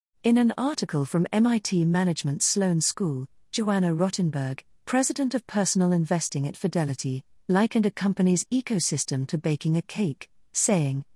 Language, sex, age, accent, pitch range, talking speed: English, female, 40-59, British, 155-205 Hz, 135 wpm